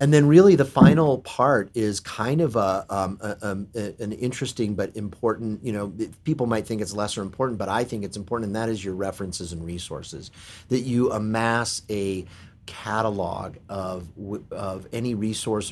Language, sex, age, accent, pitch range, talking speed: English, male, 30-49, American, 95-120 Hz, 175 wpm